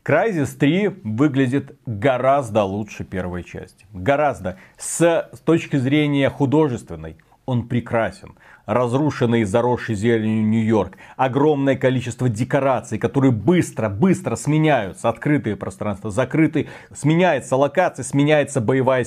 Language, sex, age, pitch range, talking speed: Russian, male, 40-59, 115-155 Hz, 100 wpm